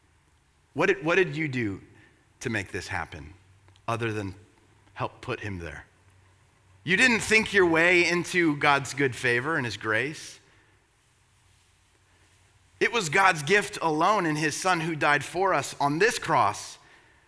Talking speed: 150 wpm